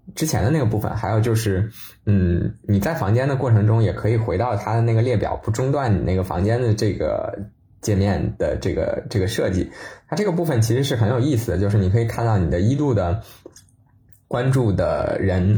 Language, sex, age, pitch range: Chinese, male, 20-39, 100-120 Hz